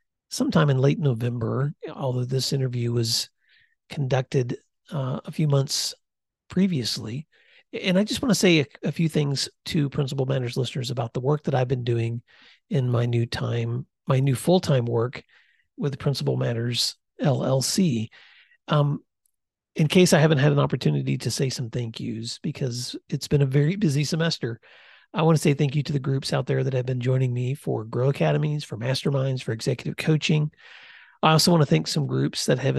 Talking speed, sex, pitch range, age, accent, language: 185 wpm, male, 125-155 Hz, 40-59, American, English